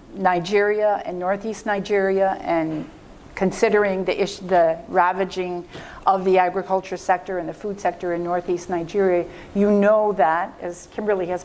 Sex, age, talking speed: female, 50-69, 140 wpm